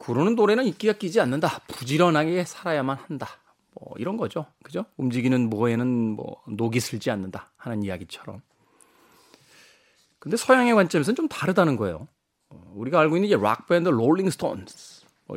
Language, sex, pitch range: Korean, male, 115-195 Hz